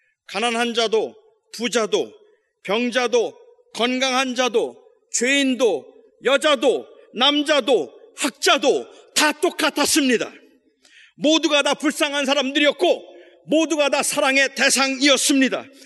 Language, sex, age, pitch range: Korean, male, 40-59, 220-330 Hz